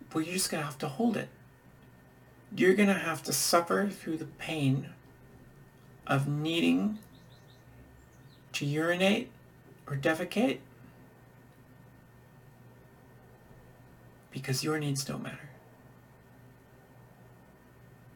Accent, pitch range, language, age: American, 130-170 Hz, English, 40-59